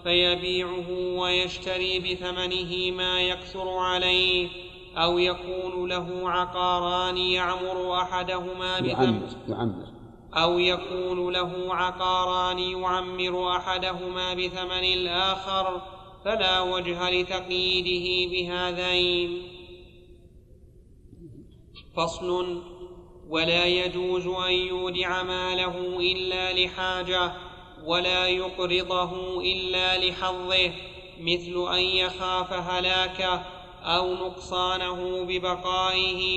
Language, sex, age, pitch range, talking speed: Arabic, male, 30-49, 180-185 Hz, 75 wpm